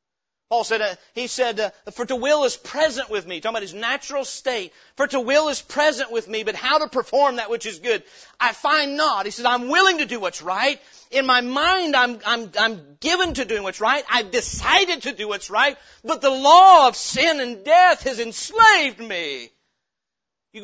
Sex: male